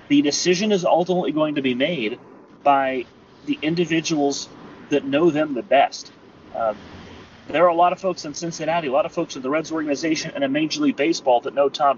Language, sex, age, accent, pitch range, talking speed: English, male, 30-49, American, 145-205 Hz, 205 wpm